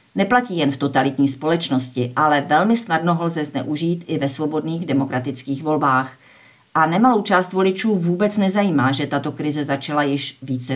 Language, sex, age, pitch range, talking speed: Czech, female, 50-69, 135-165 Hz, 155 wpm